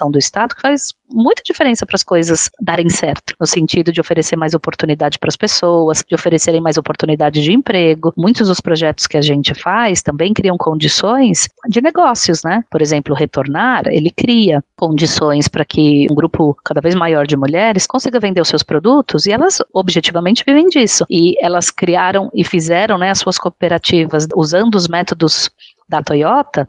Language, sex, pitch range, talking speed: Portuguese, female, 160-240 Hz, 175 wpm